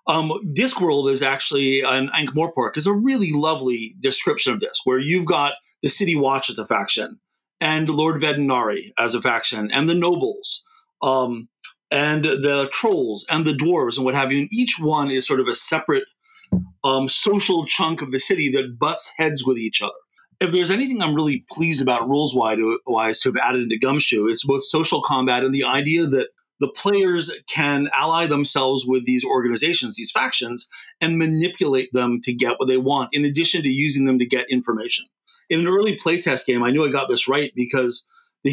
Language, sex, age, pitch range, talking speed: English, male, 30-49, 130-175 Hz, 190 wpm